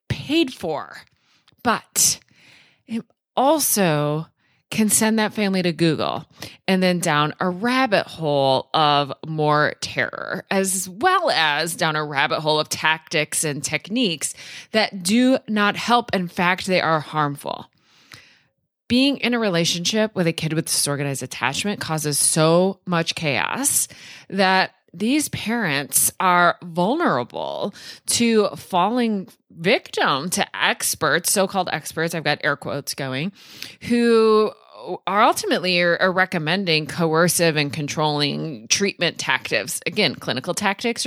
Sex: female